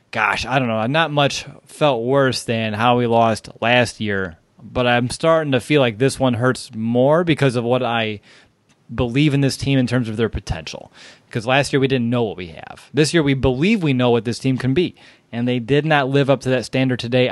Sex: male